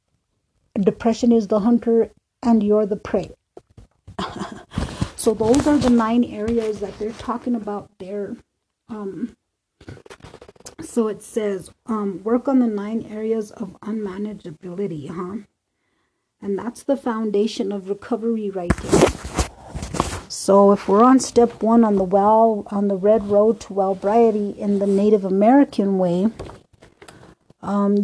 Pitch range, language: 195-225 Hz, English